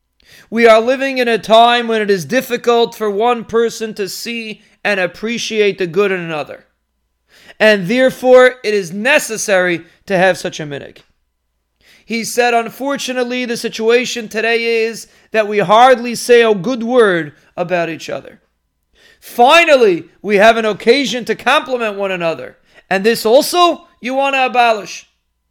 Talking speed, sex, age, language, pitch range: 150 wpm, male, 40-59, English, 200-245 Hz